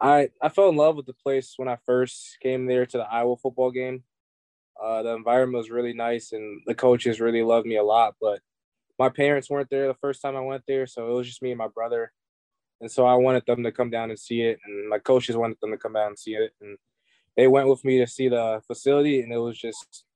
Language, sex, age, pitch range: English, male, 20-39, 110-125 Hz